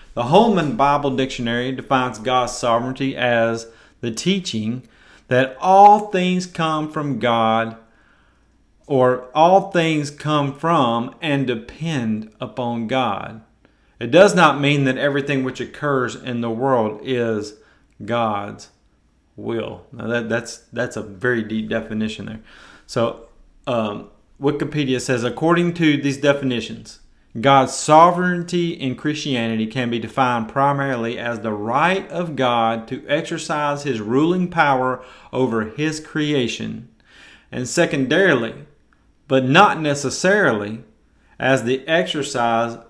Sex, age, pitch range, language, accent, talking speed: male, 40-59, 115-145 Hz, English, American, 120 wpm